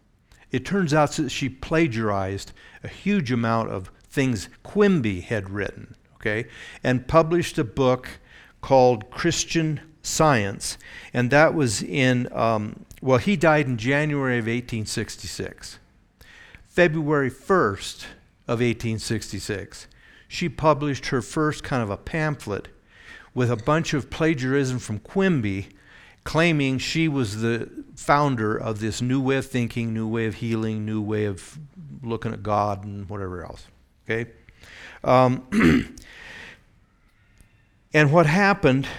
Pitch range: 110-150 Hz